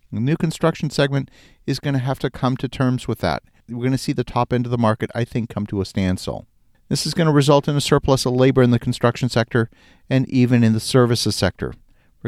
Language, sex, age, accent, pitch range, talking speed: English, male, 50-69, American, 110-135 Hz, 250 wpm